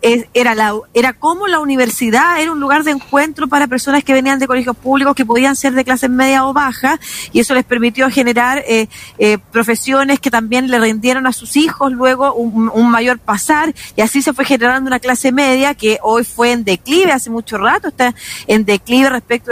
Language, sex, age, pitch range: Spanish, female, 40-59, 230-290 Hz